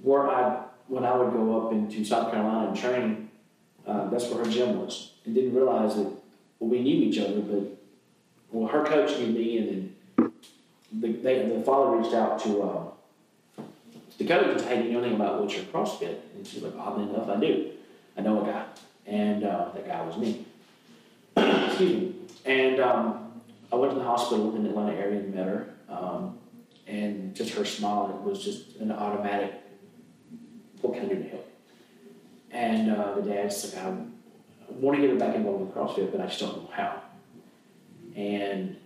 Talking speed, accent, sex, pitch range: 200 wpm, American, male, 105-155 Hz